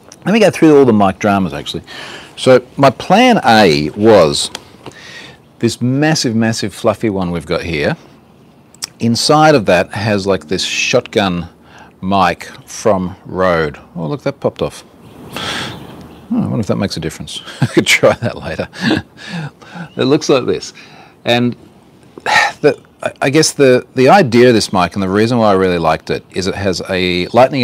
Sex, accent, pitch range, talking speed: male, Australian, 95-120 Hz, 165 wpm